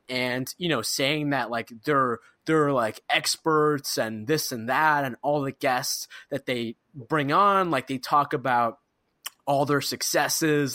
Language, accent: English, American